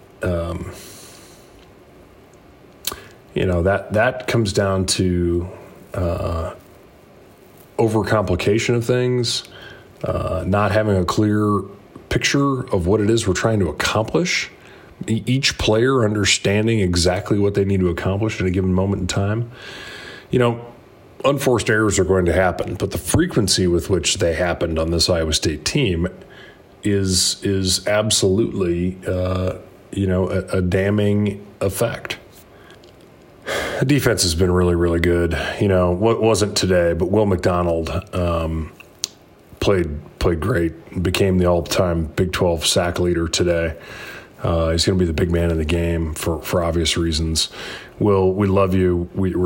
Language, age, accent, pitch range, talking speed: English, 30-49, American, 85-105 Hz, 145 wpm